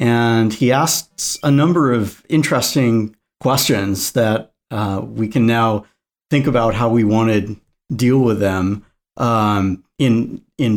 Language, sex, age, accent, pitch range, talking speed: English, male, 50-69, American, 110-135 Hz, 140 wpm